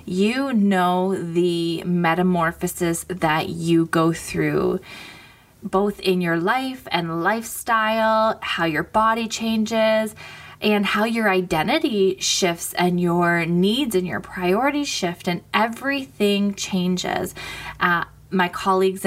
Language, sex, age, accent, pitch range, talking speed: English, female, 20-39, American, 175-210 Hz, 115 wpm